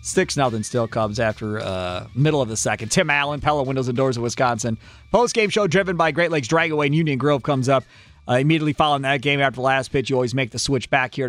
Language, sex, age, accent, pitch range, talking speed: English, male, 40-59, American, 110-140 Hz, 240 wpm